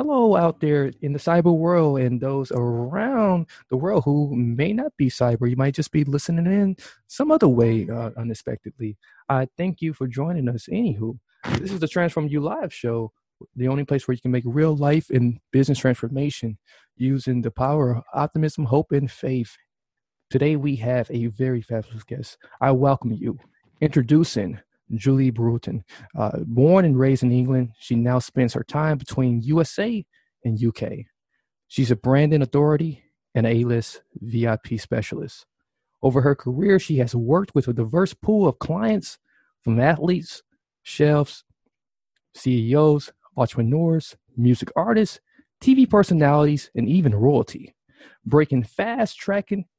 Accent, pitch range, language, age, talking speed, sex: American, 125-165 Hz, English, 20-39, 150 wpm, male